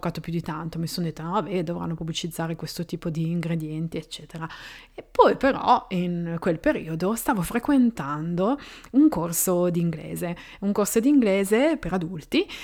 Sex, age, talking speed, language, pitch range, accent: female, 30-49, 145 wpm, Italian, 165-230 Hz, native